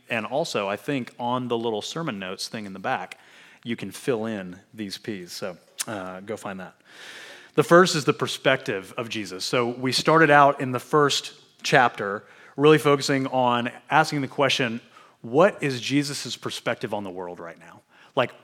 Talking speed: 180 wpm